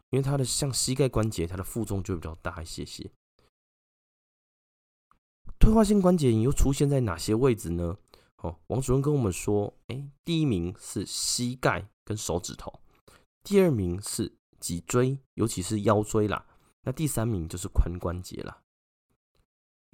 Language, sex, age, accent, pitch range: Chinese, male, 20-39, native, 90-130 Hz